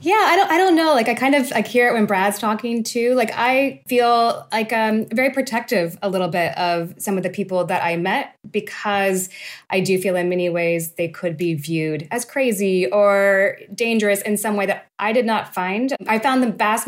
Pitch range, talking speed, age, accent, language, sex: 170-225 Hz, 220 wpm, 20-39, American, English, female